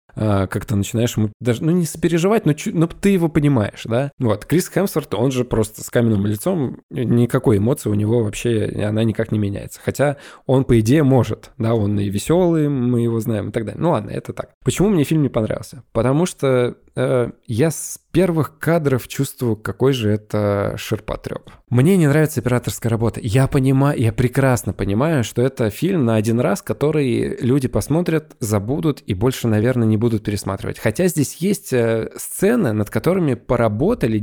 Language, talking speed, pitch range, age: Russian, 175 wpm, 110-140 Hz, 20-39